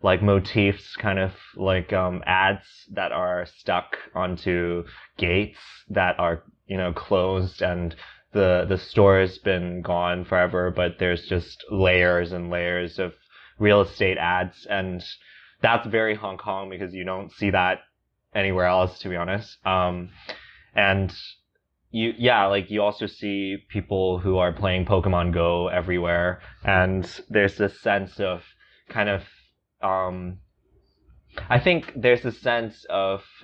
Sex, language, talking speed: male, English, 140 wpm